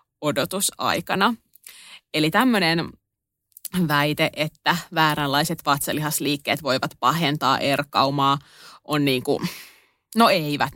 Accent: native